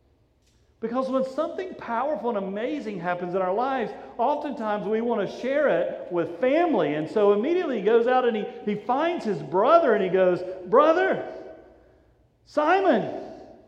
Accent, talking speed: American, 155 wpm